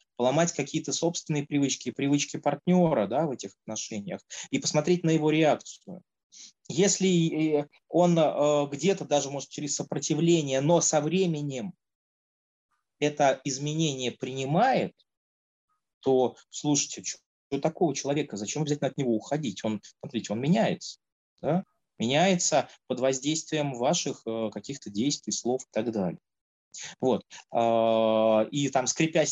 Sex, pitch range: male, 120-160 Hz